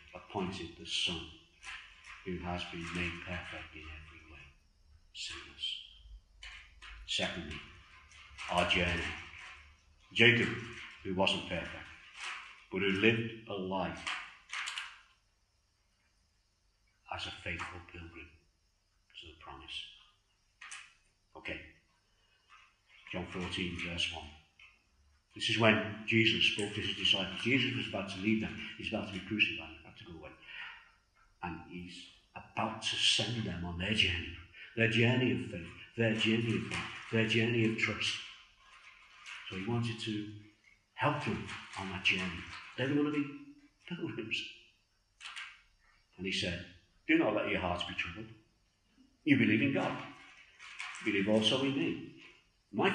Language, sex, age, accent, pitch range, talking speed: English, male, 60-79, British, 85-110 Hz, 125 wpm